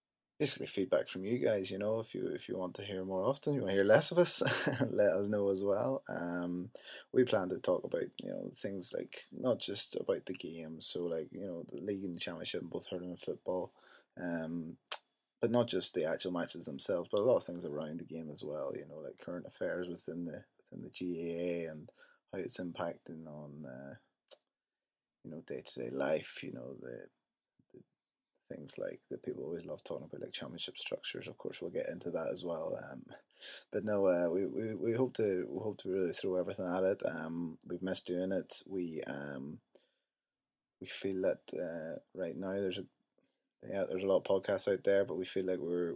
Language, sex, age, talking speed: English, male, 20-39, 210 wpm